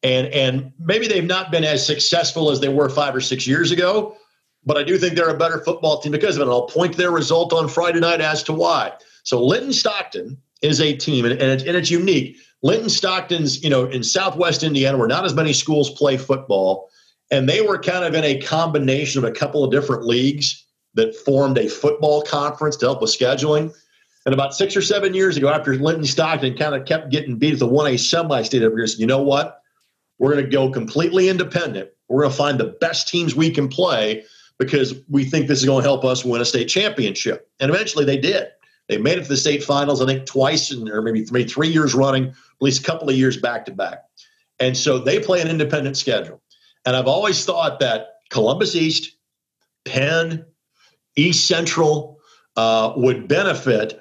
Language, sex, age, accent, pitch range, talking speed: English, male, 50-69, American, 135-165 Hz, 205 wpm